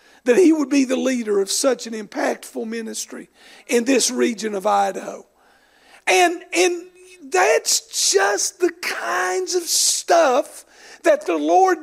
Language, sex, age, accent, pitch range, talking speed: English, male, 50-69, American, 240-335 Hz, 135 wpm